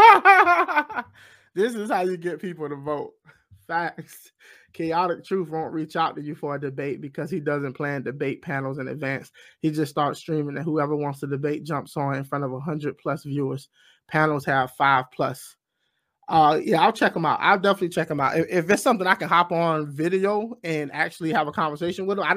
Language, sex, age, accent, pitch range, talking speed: English, male, 20-39, American, 145-195 Hz, 205 wpm